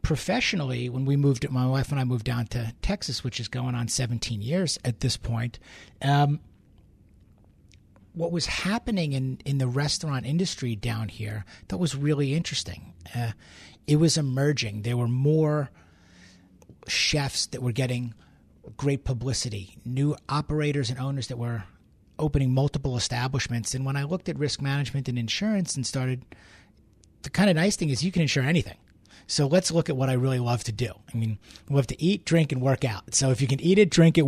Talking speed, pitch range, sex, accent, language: 185 wpm, 115-145 Hz, male, American, English